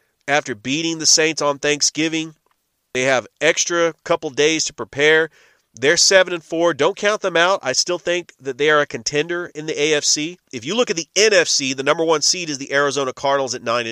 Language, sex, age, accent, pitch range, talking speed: English, male, 30-49, American, 130-165 Hz, 205 wpm